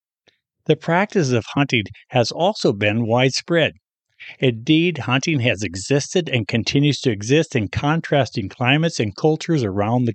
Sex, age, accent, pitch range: male, 60-79, American, 110-140 Hz